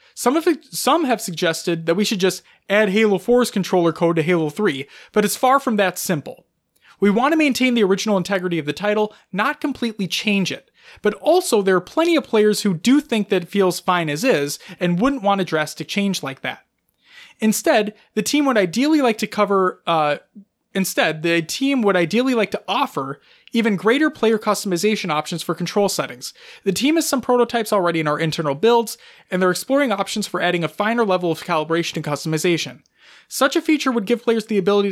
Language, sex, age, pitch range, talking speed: English, male, 20-39, 170-230 Hz, 200 wpm